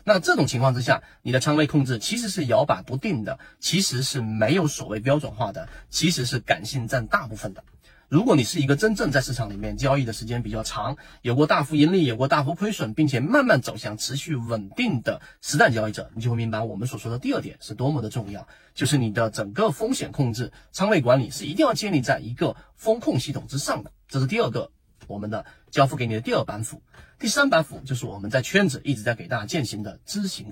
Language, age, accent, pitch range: Chinese, 30-49, native, 115-160 Hz